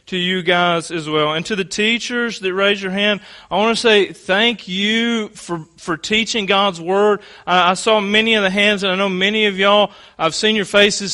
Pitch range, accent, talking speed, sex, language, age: 175-205 Hz, American, 220 wpm, male, English, 30-49